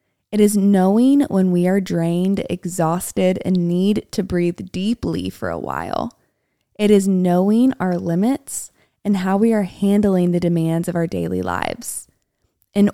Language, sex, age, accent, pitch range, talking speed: English, female, 20-39, American, 175-220 Hz, 155 wpm